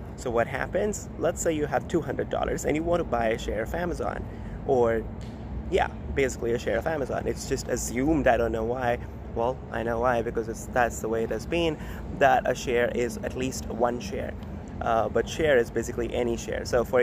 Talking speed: 210 wpm